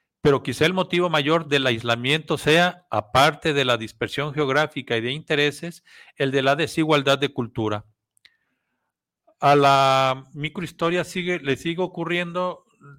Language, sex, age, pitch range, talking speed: Spanish, male, 50-69, 130-160 Hz, 135 wpm